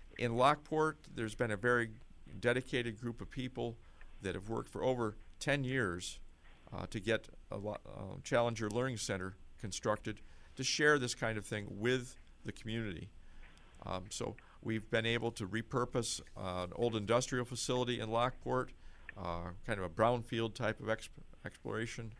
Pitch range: 95-125 Hz